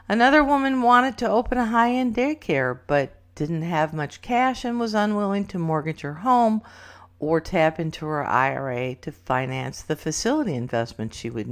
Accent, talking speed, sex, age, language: American, 165 wpm, female, 50-69, English